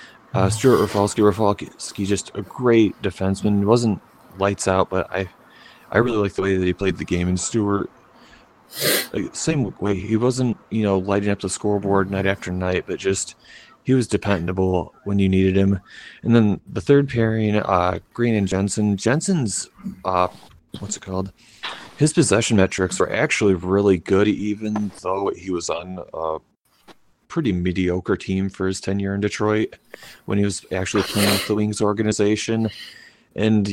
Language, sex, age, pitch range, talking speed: English, male, 30-49, 95-105 Hz, 165 wpm